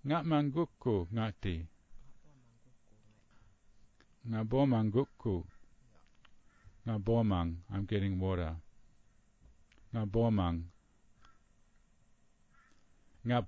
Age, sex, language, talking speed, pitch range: 50-69, male, English, 60 wpm, 95-130 Hz